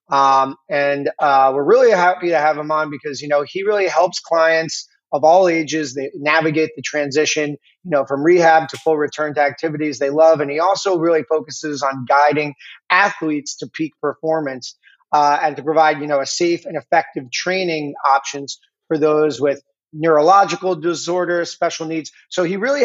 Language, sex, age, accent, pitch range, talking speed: English, male, 30-49, American, 145-175 Hz, 180 wpm